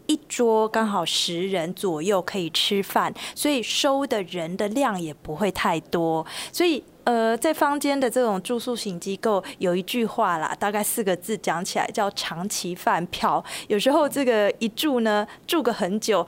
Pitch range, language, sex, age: 185-245 Hz, Chinese, female, 20-39